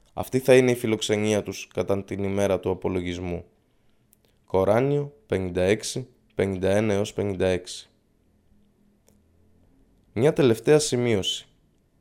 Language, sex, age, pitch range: Greek, male, 20-39, 95-125 Hz